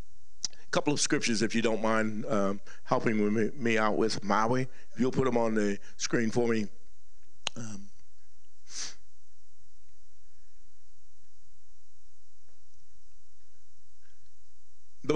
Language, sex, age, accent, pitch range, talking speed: English, male, 50-69, American, 90-130 Hz, 105 wpm